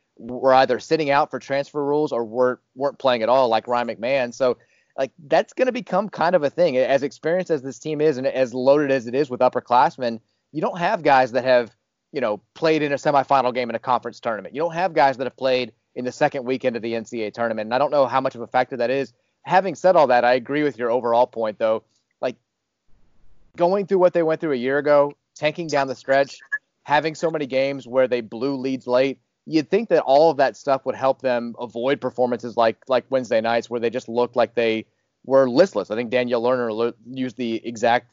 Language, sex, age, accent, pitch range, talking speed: English, male, 30-49, American, 120-145 Hz, 230 wpm